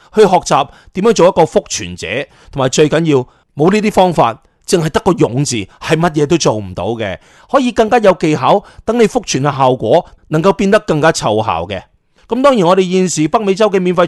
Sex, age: male, 30-49